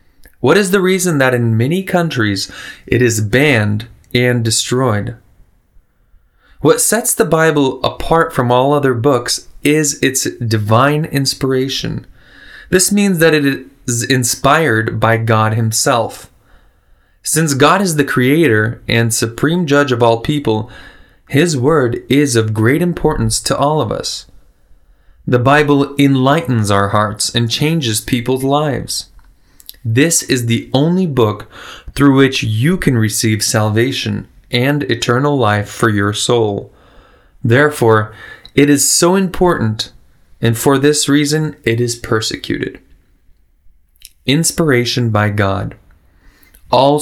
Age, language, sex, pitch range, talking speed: 20-39, Russian, male, 110-145 Hz, 125 wpm